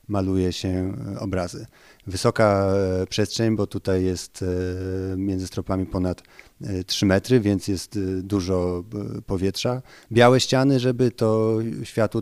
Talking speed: 110 wpm